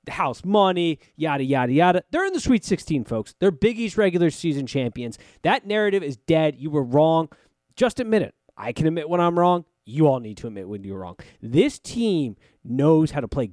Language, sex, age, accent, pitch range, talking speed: English, male, 20-39, American, 125-175 Hz, 210 wpm